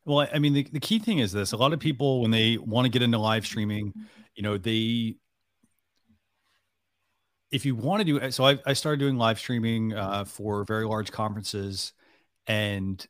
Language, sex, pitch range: English, male, 105-125 Hz